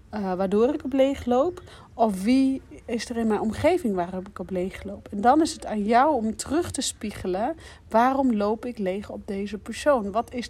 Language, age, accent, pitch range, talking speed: Dutch, 40-59, Dutch, 195-235 Hz, 210 wpm